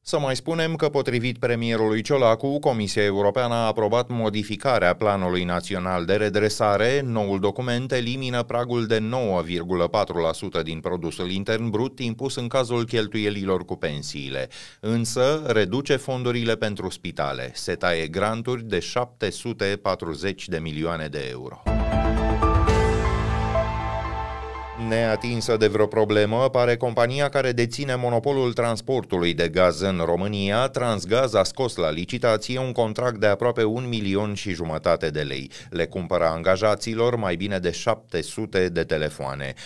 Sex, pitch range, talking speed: male, 90-115 Hz, 130 wpm